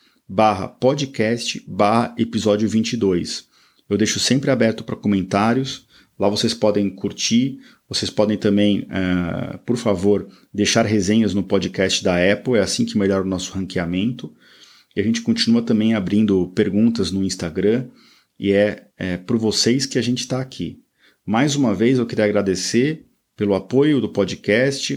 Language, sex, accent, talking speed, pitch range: Portuguese, male, Brazilian, 150 wpm, 100-120 Hz